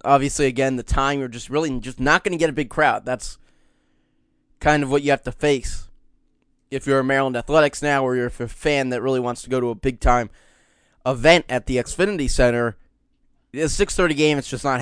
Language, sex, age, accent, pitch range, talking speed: English, male, 20-39, American, 125-155 Hz, 215 wpm